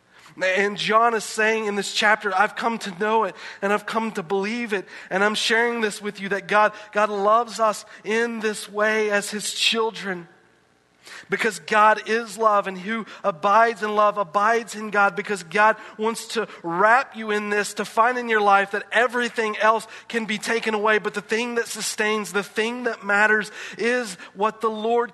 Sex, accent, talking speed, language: male, American, 190 wpm, English